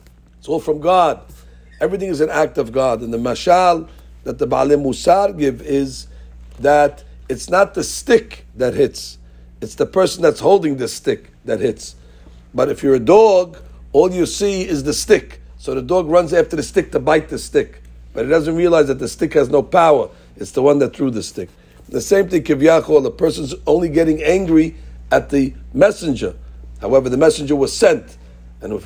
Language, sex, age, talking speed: English, male, 60-79, 195 wpm